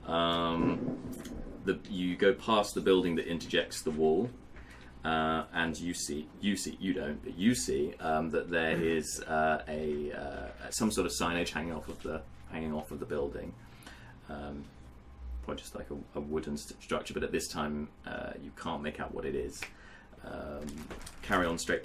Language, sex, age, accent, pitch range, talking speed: English, male, 30-49, British, 75-90 Hz, 180 wpm